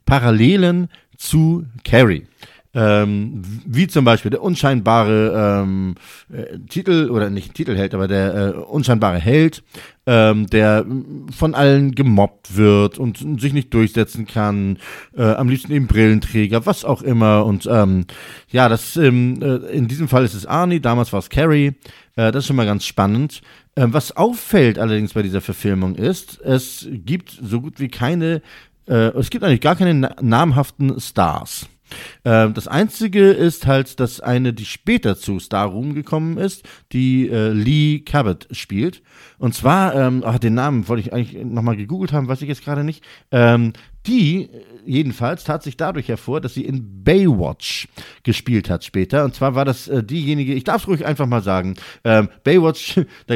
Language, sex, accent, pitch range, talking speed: German, male, German, 110-145 Hz, 160 wpm